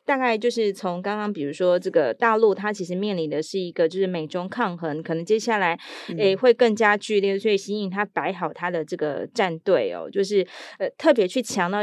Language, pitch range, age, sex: Chinese, 175-230 Hz, 20-39, female